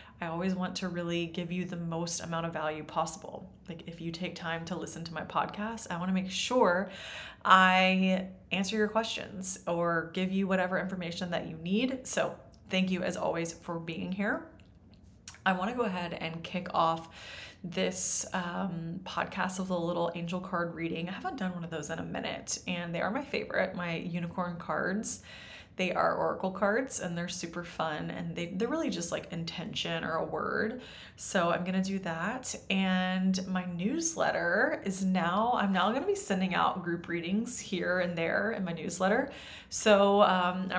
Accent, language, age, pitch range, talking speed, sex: American, English, 20-39, 170-190 Hz, 185 wpm, female